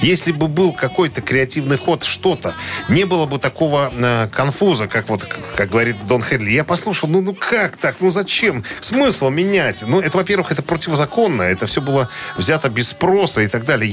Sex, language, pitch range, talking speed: male, Russian, 110-155 Hz, 180 wpm